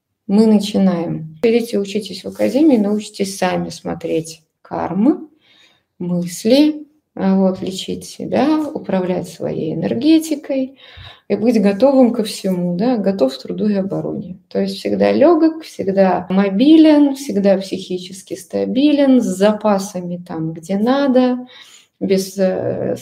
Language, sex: Russian, female